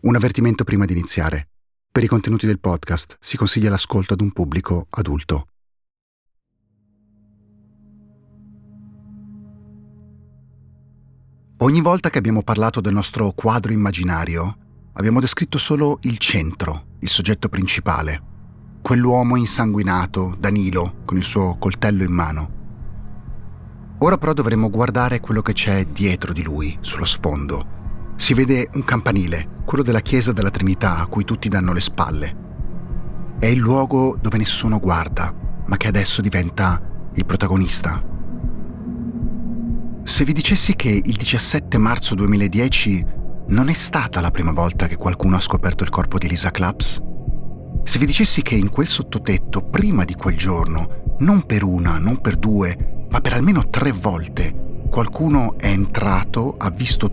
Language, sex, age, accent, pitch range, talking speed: Italian, male, 40-59, native, 90-115 Hz, 140 wpm